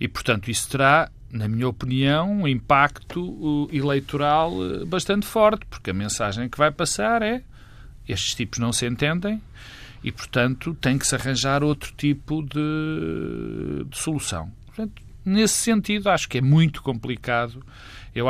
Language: Portuguese